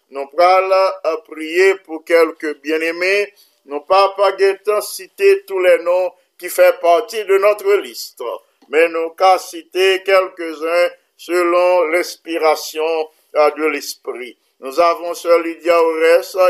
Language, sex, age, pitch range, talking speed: English, male, 50-69, 160-185 Hz, 125 wpm